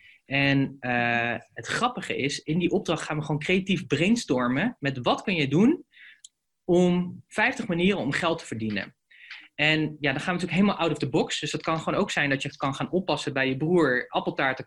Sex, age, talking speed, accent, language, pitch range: male, 20-39, 215 wpm, Dutch, Dutch, 130-175 Hz